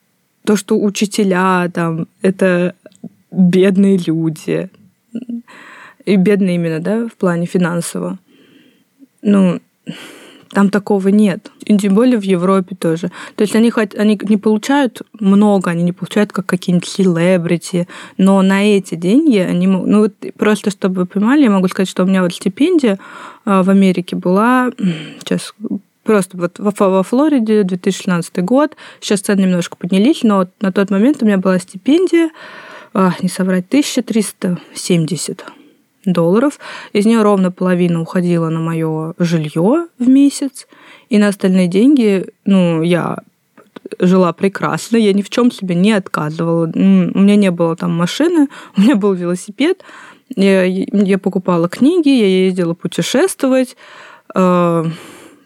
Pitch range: 180-225 Hz